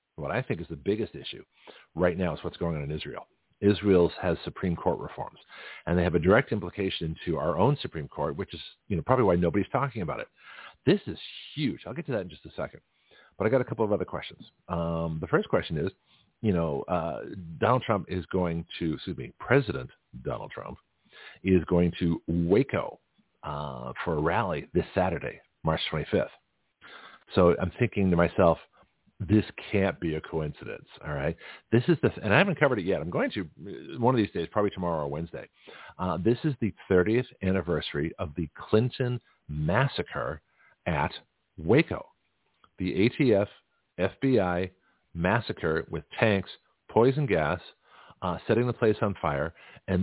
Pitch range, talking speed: 85-110 Hz, 180 wpm